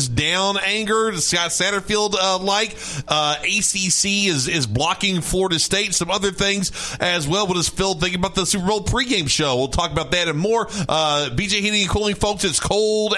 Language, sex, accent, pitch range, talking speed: English, male, American, 140-185 Hz, 185 wpm